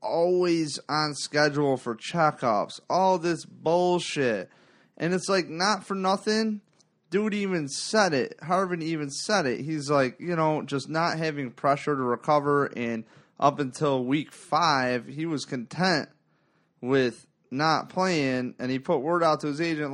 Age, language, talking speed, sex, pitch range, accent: 30-49, English, 155 wpm, male, 130-180 Hz, American